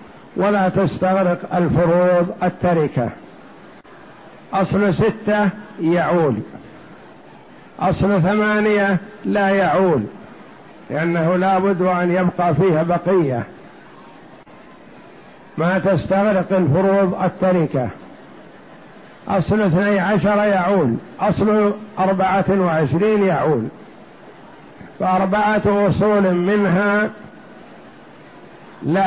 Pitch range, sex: 175-205 Hz, male